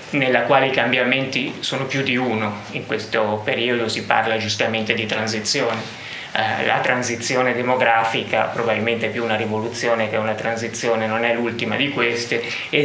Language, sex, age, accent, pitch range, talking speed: Italian, male, 20-39, native, 115-145 Hz, 155 wpm